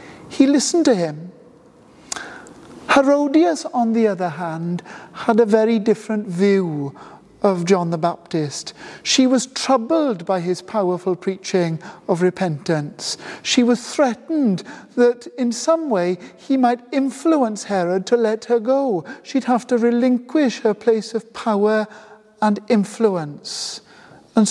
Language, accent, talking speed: English, British, 130 wpm